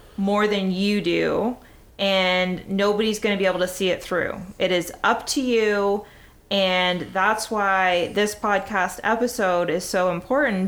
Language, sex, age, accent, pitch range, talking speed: English, female, 20-39, American, 190-235 Hz, 150 wpm